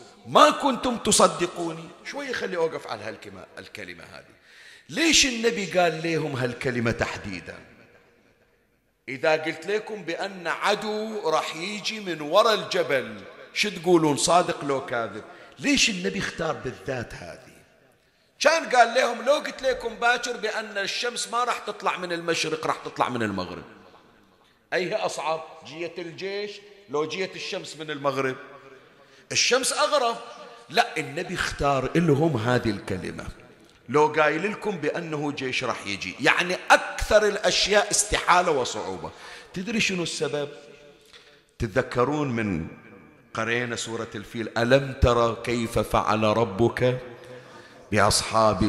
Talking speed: 120 wpm